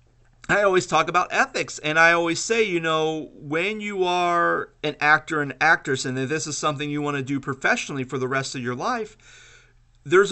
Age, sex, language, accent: 40-59, male, English, American